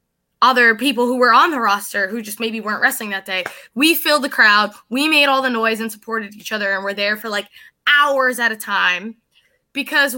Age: 20-39